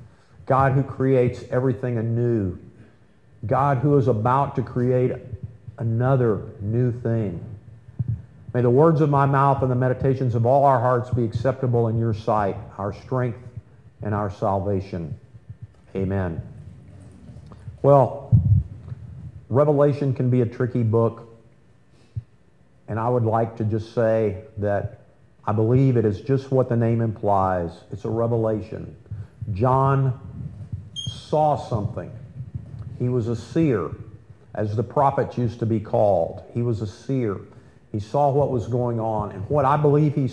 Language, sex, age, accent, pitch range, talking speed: English, male, 50-69, American, 110-130 Hz, 140 wpm